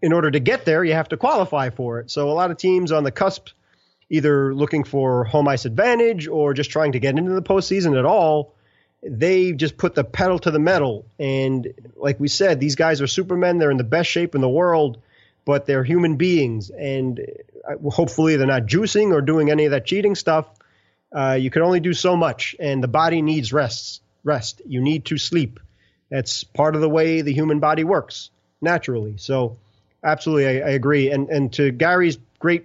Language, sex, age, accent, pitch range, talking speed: English, male, 30-49, American, 135-165 Hz, 205 wpm